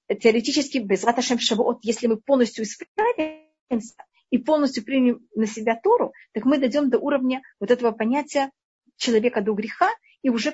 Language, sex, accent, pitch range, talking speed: Russian, female, native, 220-275 Hz, 135 wpm